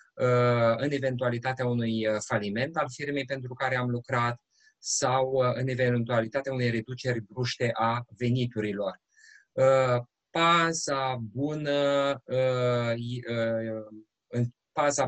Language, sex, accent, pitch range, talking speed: Romanian, male, native, 120-145 Hz, 75 wpm